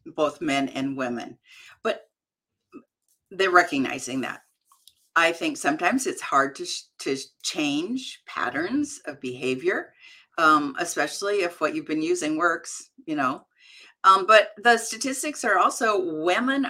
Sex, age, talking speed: female, 50-69, 135 wpm